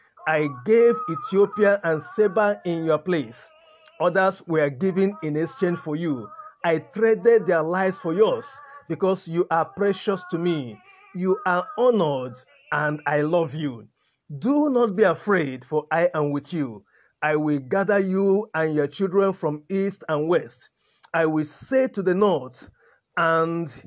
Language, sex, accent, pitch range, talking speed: English, male, Nigerian, 150-205 Hz, 155 wpm